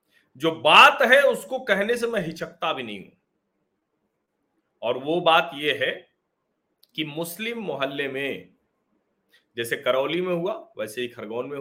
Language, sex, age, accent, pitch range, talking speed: Hindi, male, 40-59, native, 135-200 Hz, 145 wpm